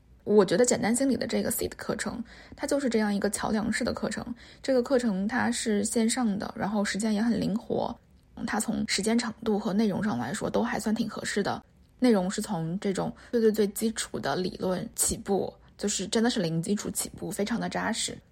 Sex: female